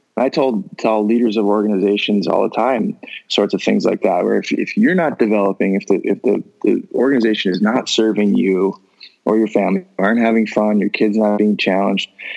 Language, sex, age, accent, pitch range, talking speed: English, male, 20-39, American, 105-120 Hz, 200 wpm